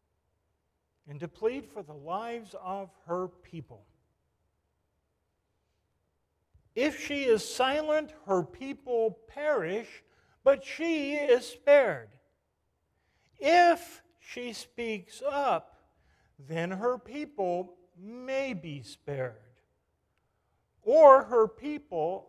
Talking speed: 90 wpm